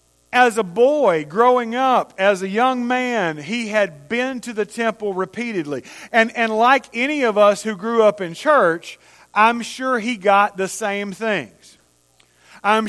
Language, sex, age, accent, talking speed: English, male, 40-59, American, 165 wpm